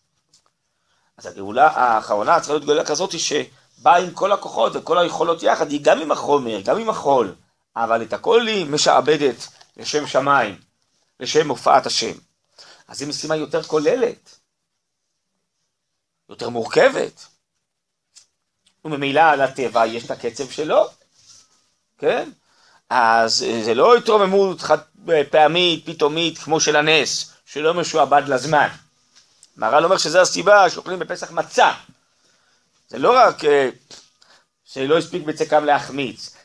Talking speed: 120 wpm